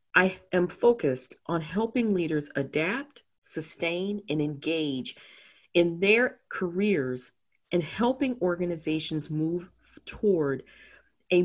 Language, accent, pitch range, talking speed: English, American, 150-200 Hz, 100 wpm